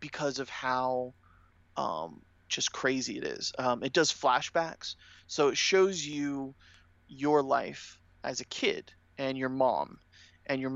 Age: 30-49